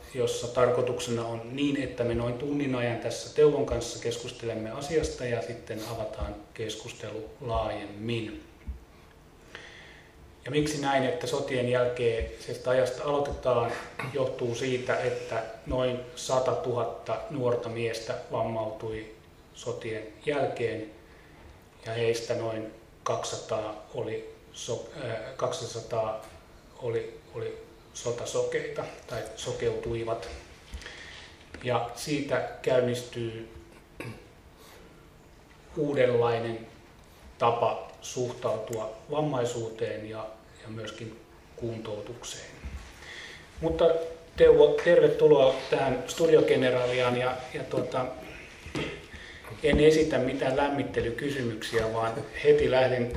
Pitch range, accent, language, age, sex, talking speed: 115-145 Hz, native, Finnish, 30-49, male, 85 wpm